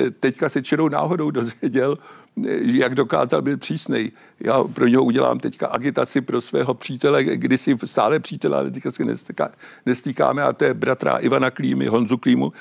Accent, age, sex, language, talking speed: native, 60-79, male, Czech, 160 wpm